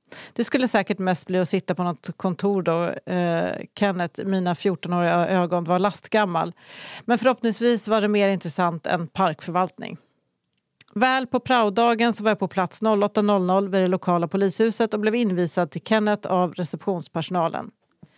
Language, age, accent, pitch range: English, 40-59, Swedish, 175-210 Hz